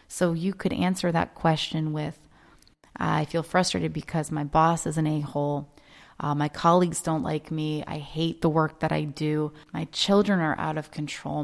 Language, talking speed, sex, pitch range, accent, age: English, 180 wpm, female, 145-170 Hz, American, 30-49